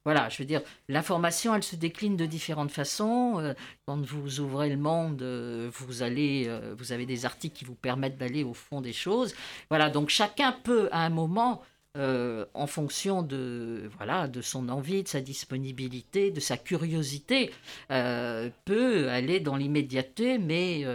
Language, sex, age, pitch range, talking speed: French, female, 50-69, 135-195 Hz, 165 wpm